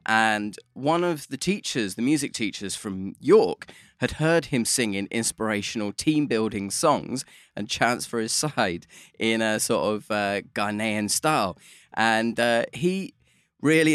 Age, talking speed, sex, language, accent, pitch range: 20-39, 140 wpm, male, English, British, 105-160 Hz